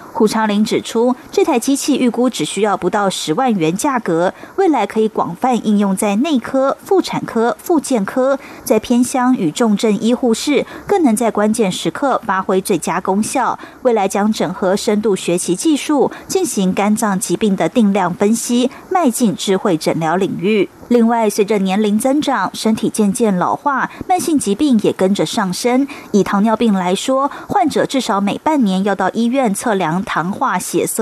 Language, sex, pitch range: German, female, 195-260 Hz